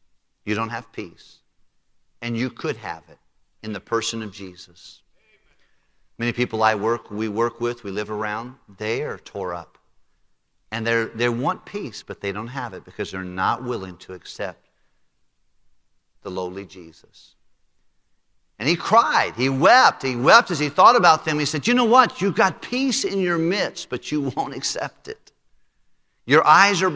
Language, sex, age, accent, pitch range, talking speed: English, male, 50-69, American, 110-150 Hz, 170 wpm